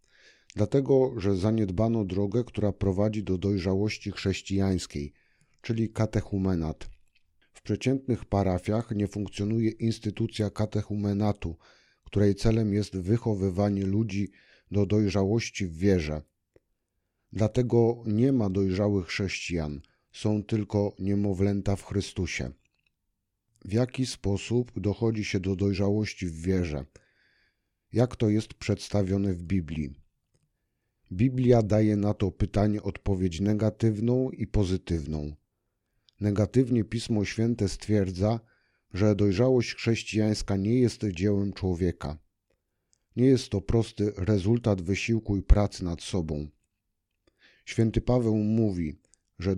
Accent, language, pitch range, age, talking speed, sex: native, Polish, 95-110 Hz, 50-69, 105 wpm, male